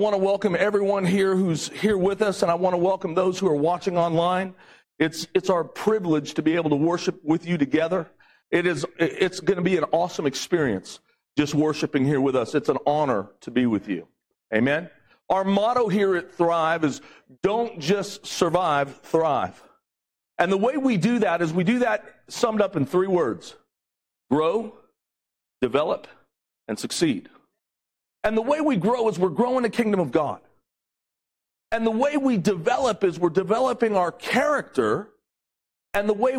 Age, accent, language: 50-69, American, English